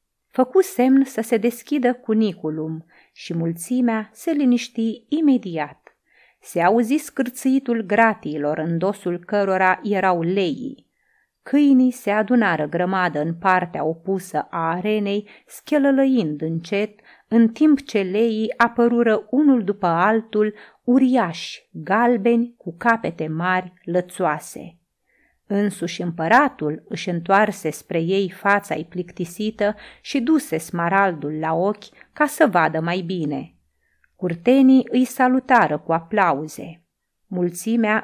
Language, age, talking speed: Romanian, 30-49, 110 wpm